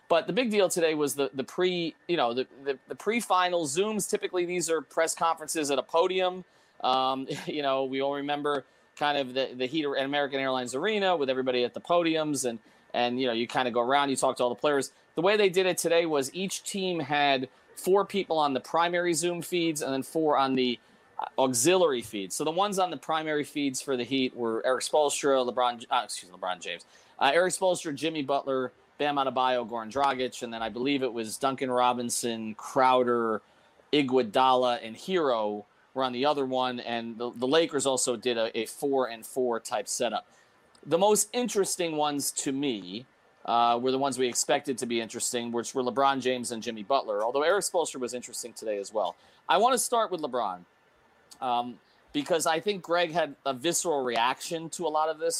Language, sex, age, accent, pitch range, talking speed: English, male, 30-49, American, 125-165 Hz, 205 wpm